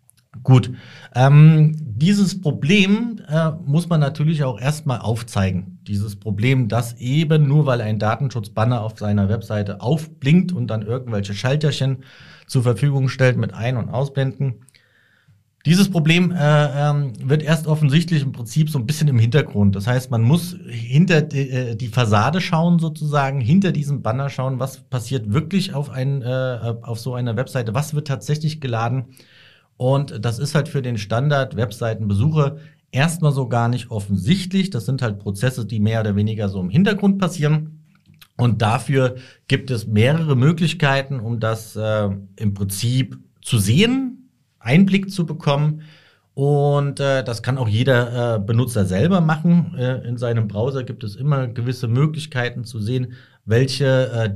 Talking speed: 155 wpm